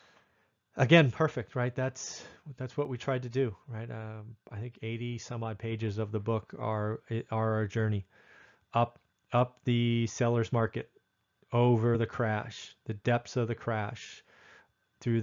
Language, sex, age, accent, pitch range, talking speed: English, male, 30-49, American, 110-125 Hz, 155 wpm